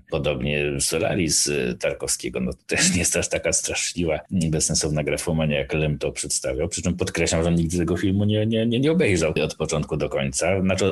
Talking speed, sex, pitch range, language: 180 wpm, male, 85-110 Hz, Polish